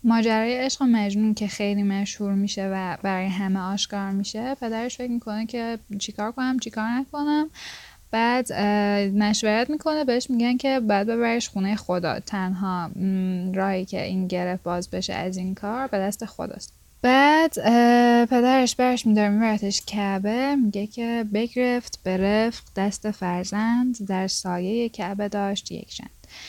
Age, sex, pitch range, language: 10-29, female, 190-245 Hz, Persian